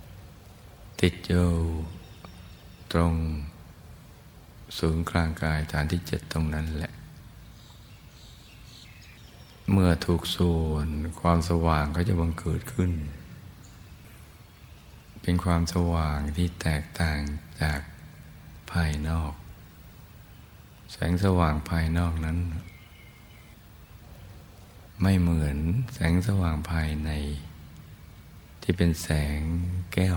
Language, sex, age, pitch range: Thai, male, 60-79, 80-90 Hz